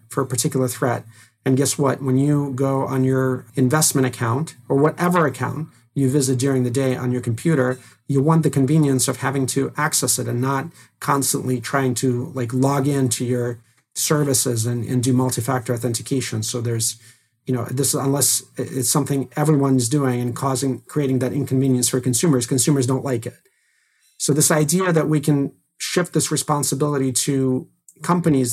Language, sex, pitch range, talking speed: English, male, 125-140 Hz, 170 wpm